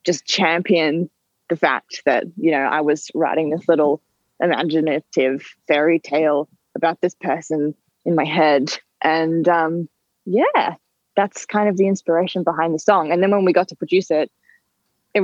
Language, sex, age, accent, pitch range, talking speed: English, female, 10-29, Australian, 155-185 Hz, 160 wpm